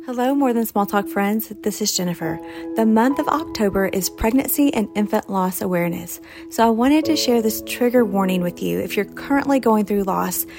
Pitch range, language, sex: 190-240 Hz, English, female